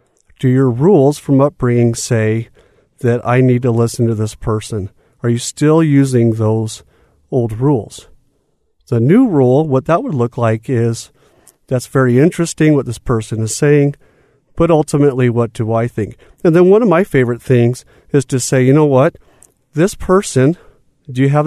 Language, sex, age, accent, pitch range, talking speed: English, male, 40-59, American, 115-150 Hz, 175 wpm